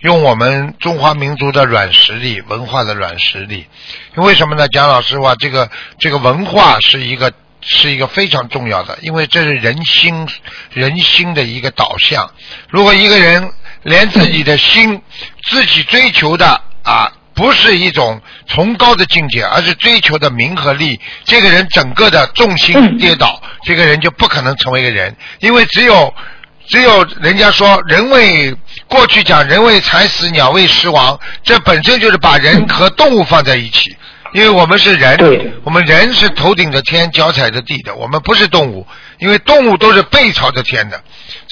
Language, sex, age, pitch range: Chinese, male, 60-79, 130-195 Hz